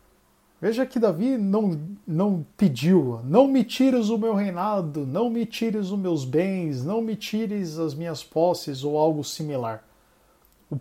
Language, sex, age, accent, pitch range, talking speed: Portuguese, male, 50-69, Brazilian, 145-200 Hz, 155 wpm